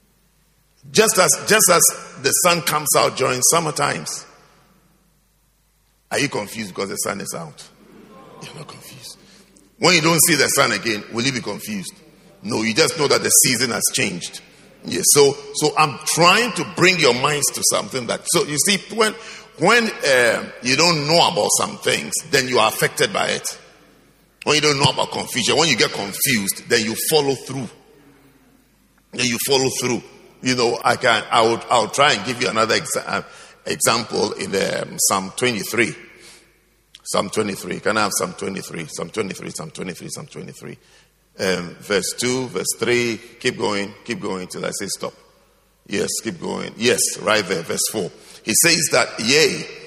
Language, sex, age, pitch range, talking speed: English, male, 50-69, 125-190 Hz, 175 wpm